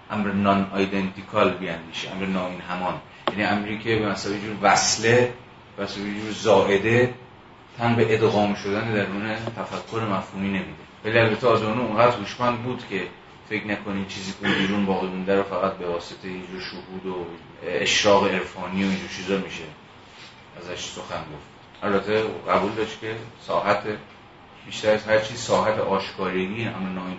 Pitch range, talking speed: 95-115 Hz, 150 wpm